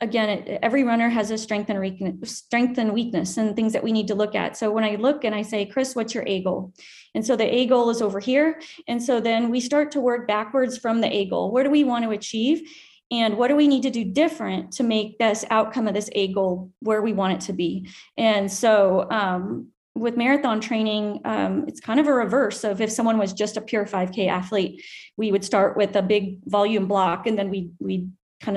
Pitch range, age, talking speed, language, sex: 195-235 Hz, 30-49, 235 wpm, English, female